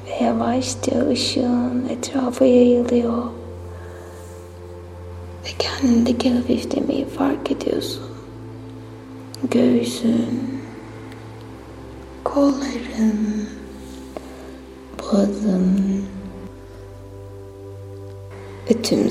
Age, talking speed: 20-39, 40 wpm